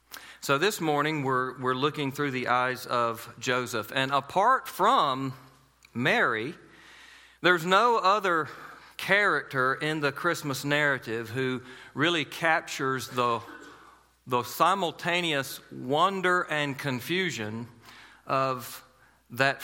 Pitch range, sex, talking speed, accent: 115-140 Hz, male, 105 wpm, American